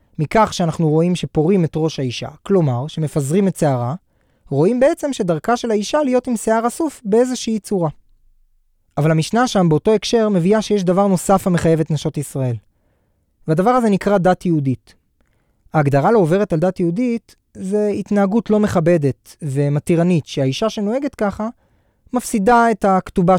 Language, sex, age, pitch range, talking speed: Hebrew, male, 20-39, 150-215 Hz, 145 wpm